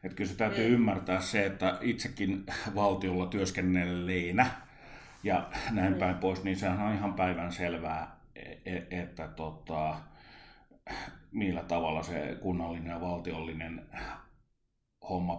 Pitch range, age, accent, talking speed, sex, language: 90-100 Hz, 30-49, native, 115 wpm, male, Finnish